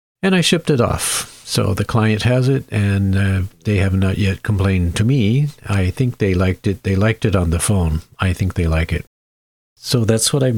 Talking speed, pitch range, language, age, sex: 220 wpm, 95-120 Hz, English, 50-69, male